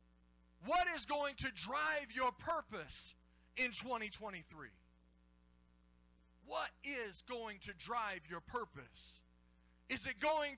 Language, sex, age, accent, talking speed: English, male, 40-59, American, 110 wpm